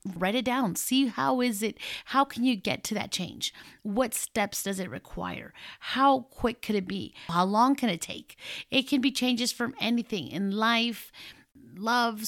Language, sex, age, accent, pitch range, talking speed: English, female, 30-49, American, 185-235 Hz, 185 wpm